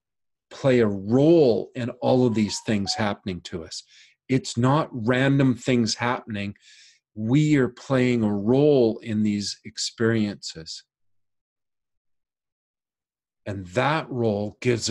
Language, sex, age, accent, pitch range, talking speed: English, male, 50-69, American, 105-125 Hz, 115 wpm